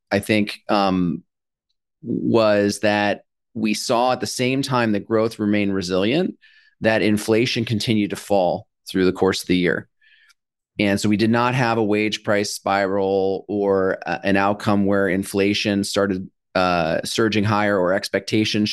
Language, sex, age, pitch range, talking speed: English, male, 30-49, 100-120 Hz, 150 wpm